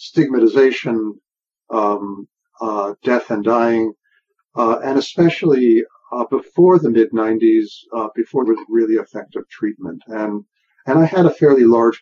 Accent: American